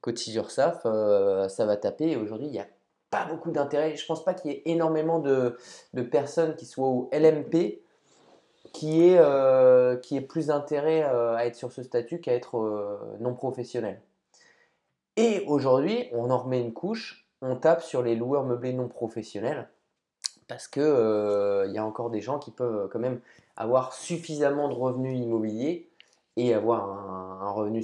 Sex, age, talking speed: male, 20-39, 170 wpm